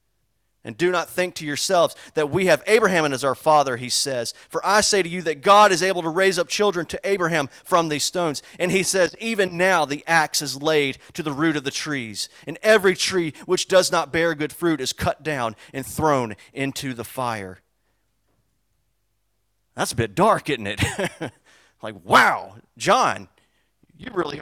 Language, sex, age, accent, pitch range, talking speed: English, male, 30-49, American, 115-180 Hz, 190 wpm